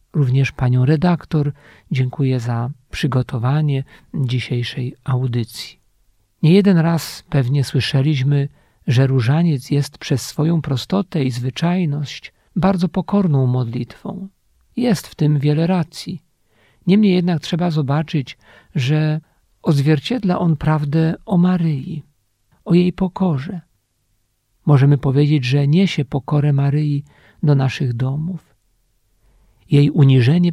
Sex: male